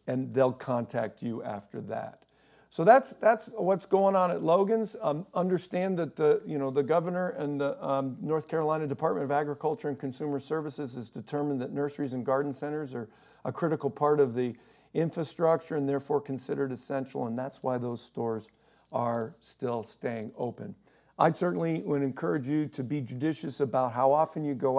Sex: male